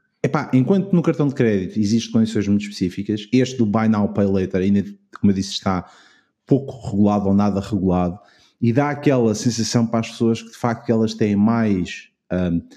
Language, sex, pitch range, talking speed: Portuguese, male, 100-125 Hz, 190 wpm